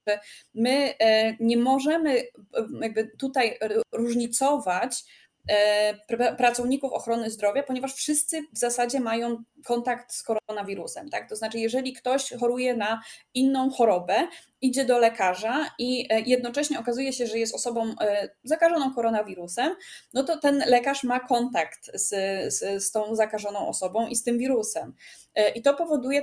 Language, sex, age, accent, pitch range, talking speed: Polish, female, 20-39, native, 220-265 Hz, 130 wpm